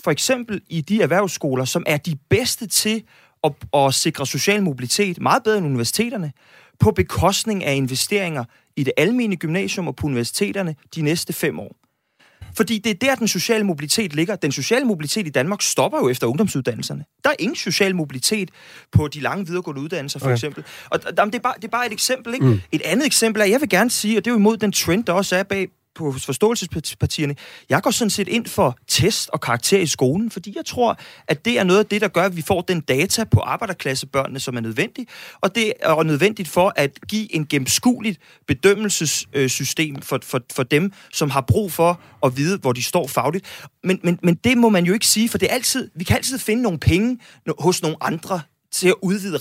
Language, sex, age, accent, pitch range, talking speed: Danish, male, 30-49, native, 145-215 Hz, 205 wpm